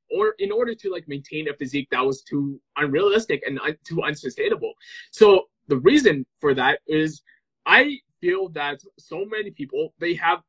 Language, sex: English, male